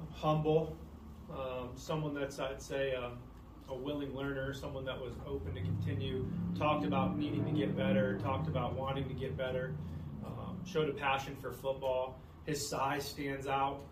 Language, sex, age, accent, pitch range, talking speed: English, male, 30-49, American, 125-140 Hz, 165 wpm